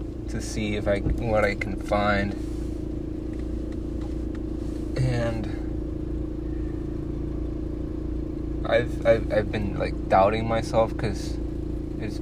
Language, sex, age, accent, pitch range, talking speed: English, male, 20-39, American, 80-110 Hz, 90 wpm